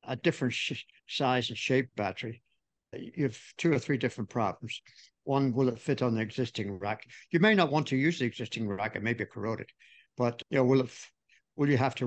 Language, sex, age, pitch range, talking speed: English, male, 60-79, 115-135 Hz, 220 wpm